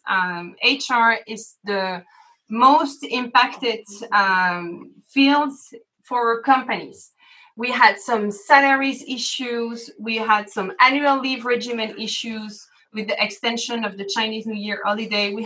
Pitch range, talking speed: 210-270 Hz, 125 wpm